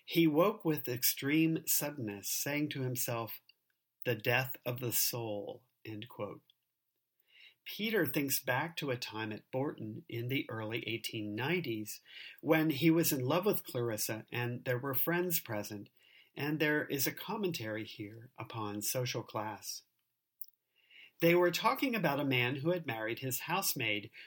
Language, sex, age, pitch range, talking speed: English, male, 50-69, 110-160 Hz, 140 wpm